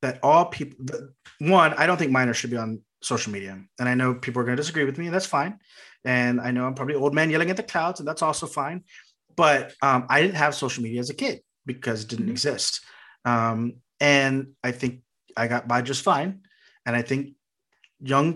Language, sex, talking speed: English, male, 220 wpm